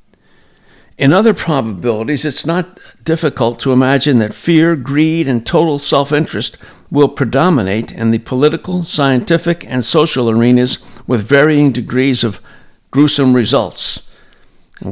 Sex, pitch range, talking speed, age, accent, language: male, 120-150 Hz, 120 wpm, 60-79, American, English